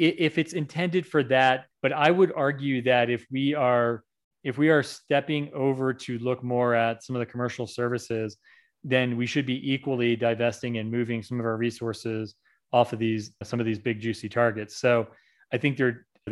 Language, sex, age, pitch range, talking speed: English, male, 30-49, 115-130 Hz, 190 wpm